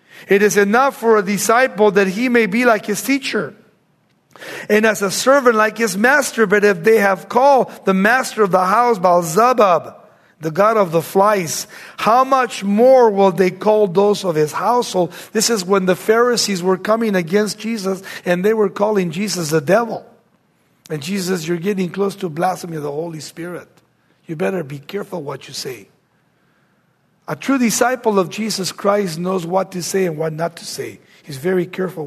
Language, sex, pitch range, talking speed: English, male, 175-210 Hz, 185 wpm